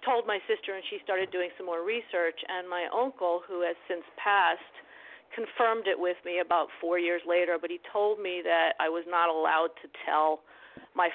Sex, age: female, 50-69